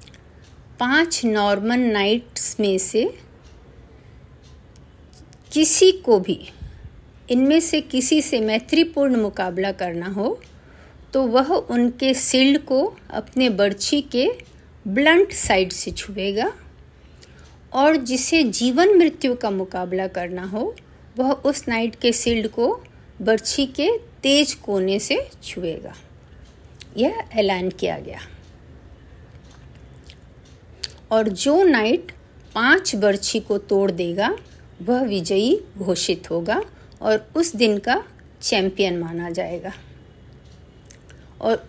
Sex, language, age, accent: female, Hindi, 50-69, native